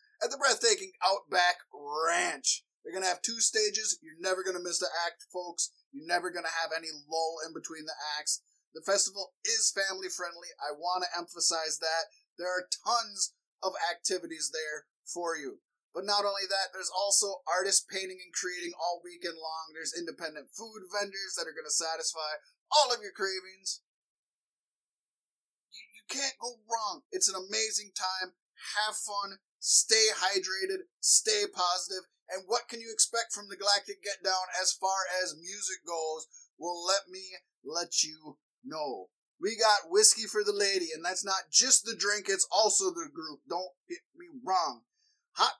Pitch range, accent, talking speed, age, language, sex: 175-235 Hz, American, 170 wpm, 20-39, English, male